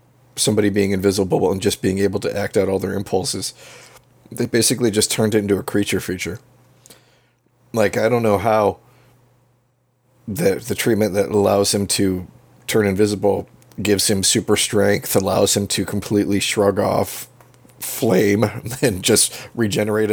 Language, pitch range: English, 100-125 Hz